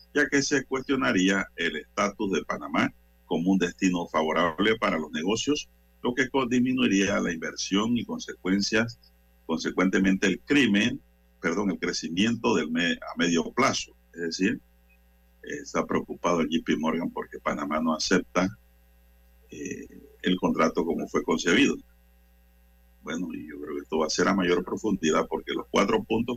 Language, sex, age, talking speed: Spanish, male, 50-69, 145 wpm